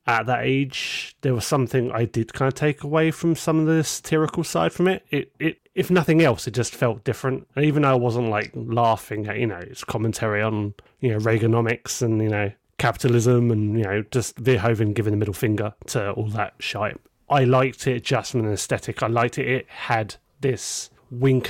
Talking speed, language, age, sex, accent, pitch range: 210 wpm, English, 30-49, male, British, 110-140 Hz